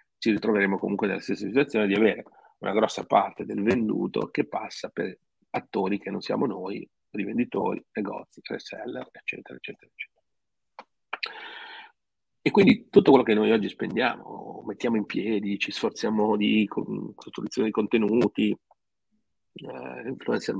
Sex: male